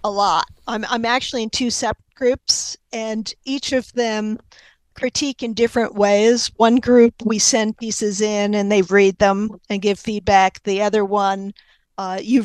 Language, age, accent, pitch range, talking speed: English, 50-69, American, 200-240 Hz, 170 wpm